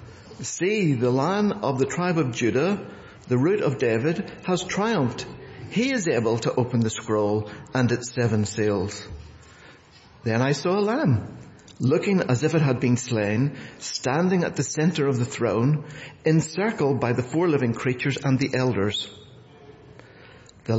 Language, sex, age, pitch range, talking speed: English, male, 60-79, 110-140 Hz, 155 wpm